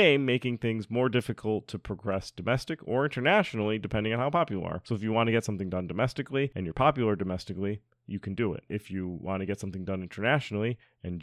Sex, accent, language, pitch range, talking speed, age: male, American, English, 100-130 Hz, 210 wpm, 30-49